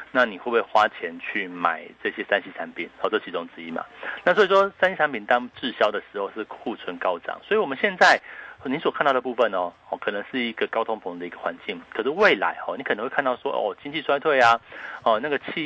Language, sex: Chinese, male